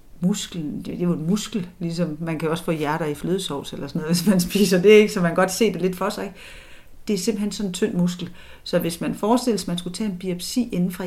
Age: 40-59